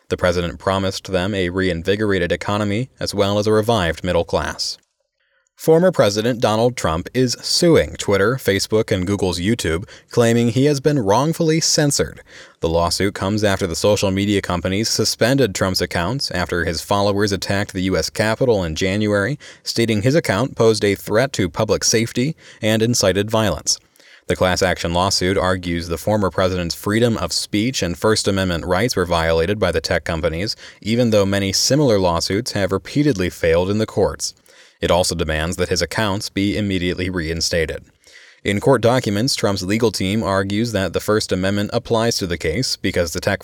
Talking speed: 170 wpm